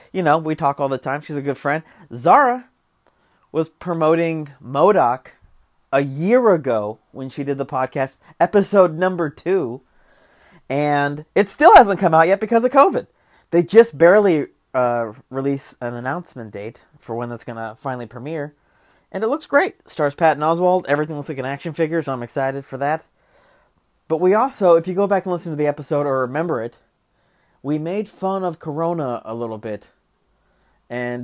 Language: English